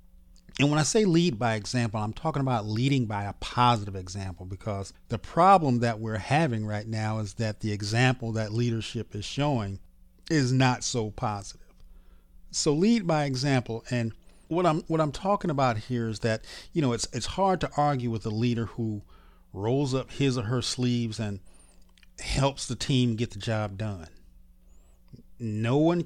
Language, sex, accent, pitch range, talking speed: English, male, American, 105-135 Hz, 175 wpm